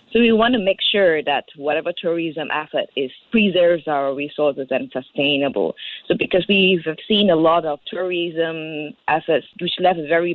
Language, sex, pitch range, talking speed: English, female, 145-185 Hz, 170 wpm